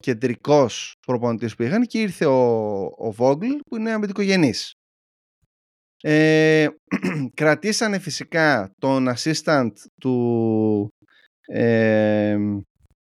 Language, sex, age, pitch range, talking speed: Greek, male, 30-49, 120-165 Hz, 85 wpm